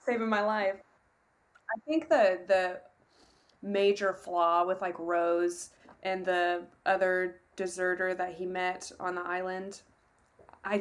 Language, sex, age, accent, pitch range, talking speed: English, female, 20-39, American, 185-230 Hz, 130 wpm